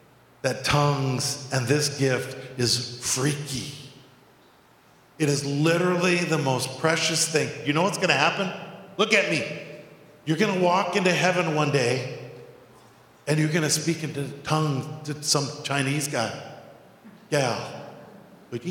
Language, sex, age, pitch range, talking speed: English, male, 50-69, 150-210 Hz, 125 wpm